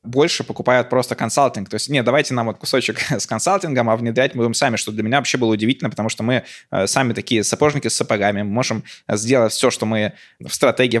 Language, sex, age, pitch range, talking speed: Russian, male, 20-39, 110-130 Hz, 220 wpm